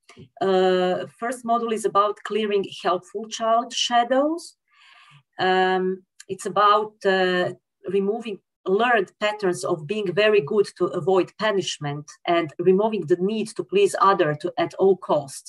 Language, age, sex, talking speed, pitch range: English, 40-59, female, 135 wpm, 180-250 Hz